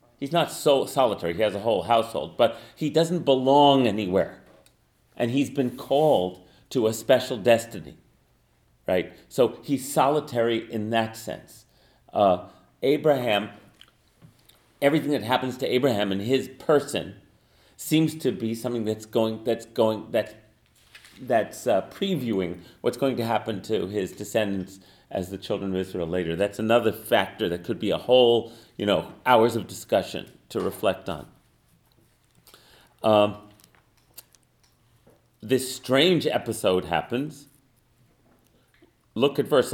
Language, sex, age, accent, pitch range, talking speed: English, male, 40-59, American, 105-135 Hz, 135 wpm